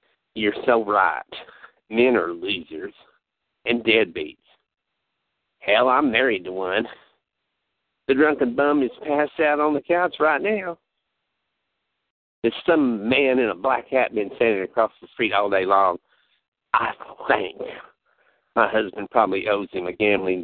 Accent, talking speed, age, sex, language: American, 140 wpm, 50-69, male, English